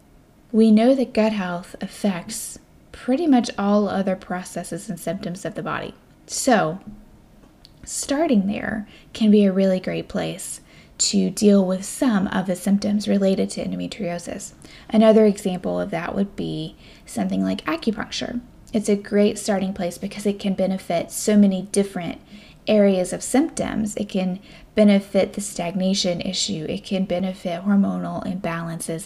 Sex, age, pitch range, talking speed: female, 10-29, 180-220 Hz, 145 wpm